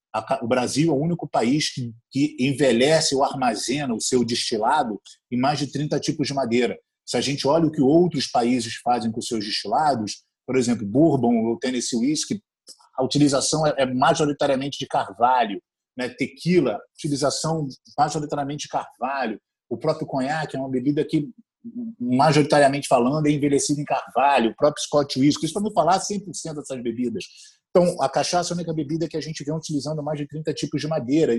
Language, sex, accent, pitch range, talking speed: Portuguese, male, Brazilian, 135-170 Hz, 180 wpm